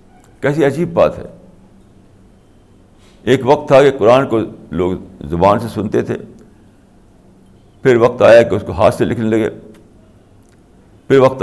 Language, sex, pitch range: Urdu, male, 90-130 Hz